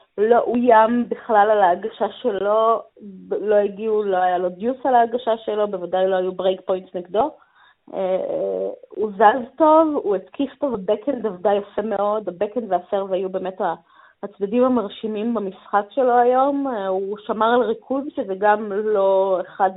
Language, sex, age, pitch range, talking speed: Hebrew, female, 20-39, 205-270 Hz, 145 wpm